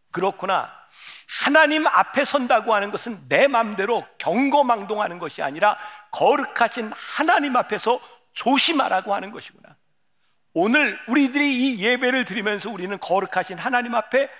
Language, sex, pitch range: Korean, male, 180-265 Hz